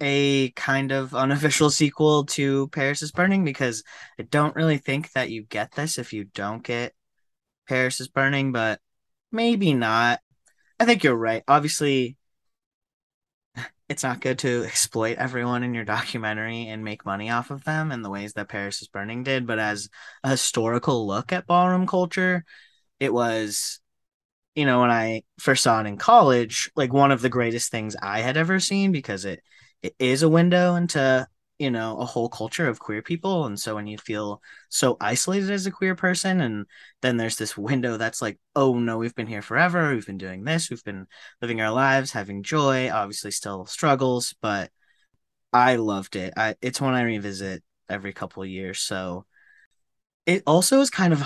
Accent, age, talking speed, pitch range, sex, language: American, 20-39, 185 wpm, 110-145 Hz, male, English